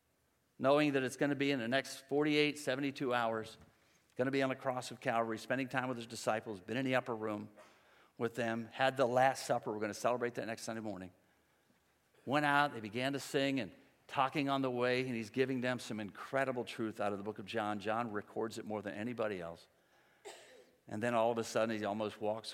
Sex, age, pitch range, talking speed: male, 50-69, 105-135 Hz, 225 wpm